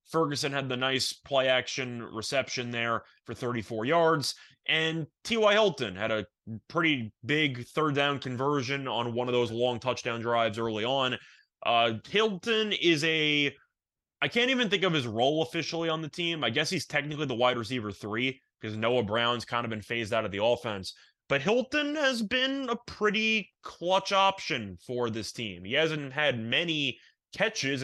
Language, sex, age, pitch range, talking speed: English, male, 20-39, 115-165 Hz, 170 wpm